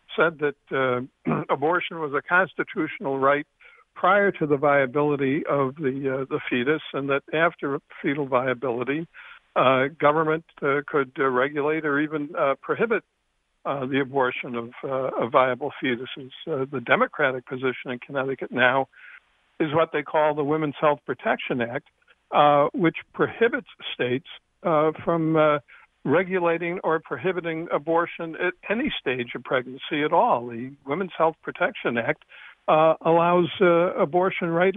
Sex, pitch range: male, 130-165 Hz